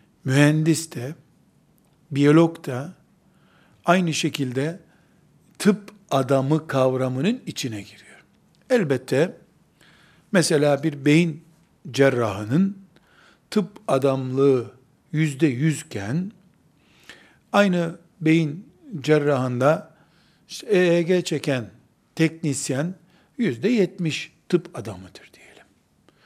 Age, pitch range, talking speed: 60-79, 135-175 Hz, 70 wpm